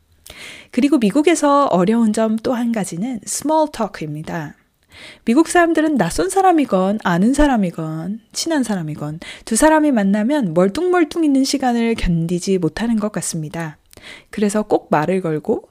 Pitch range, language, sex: 180-260 Hz, Korean, female